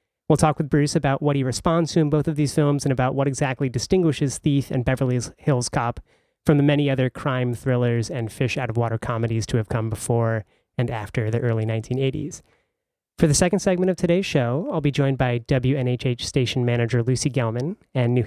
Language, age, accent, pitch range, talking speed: English, 30-49, American, 125-150 Hz, 205 wpm